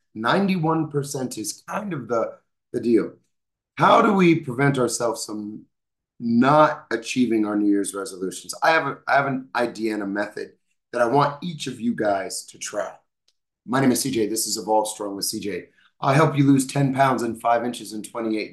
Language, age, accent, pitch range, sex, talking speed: English, 30-49, American, 110-145 Hz, male, 190 wpm